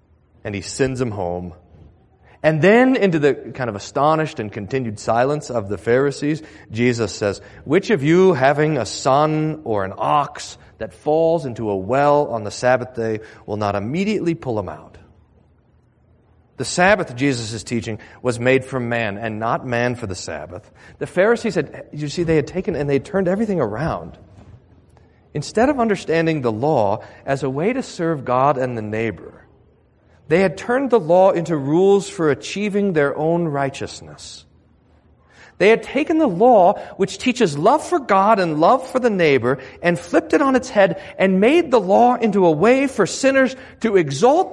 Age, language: 40-59, English